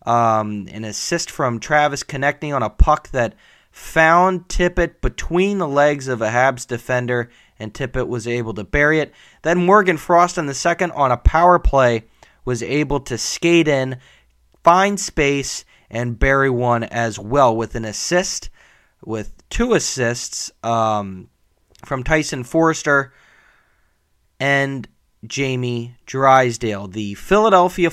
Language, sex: English, male